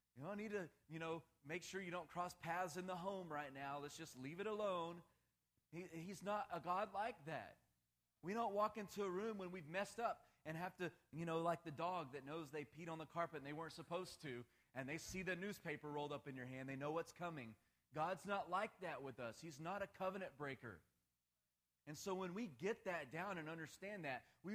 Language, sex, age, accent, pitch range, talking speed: English, male, 30-49, American, 125-180 Hz, 230 wpm